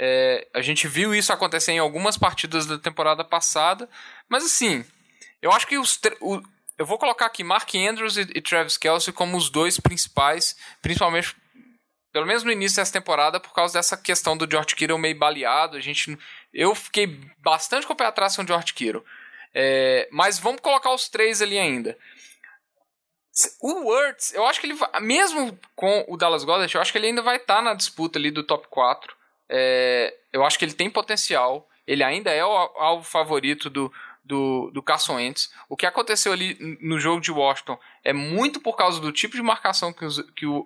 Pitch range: 155-240 Hz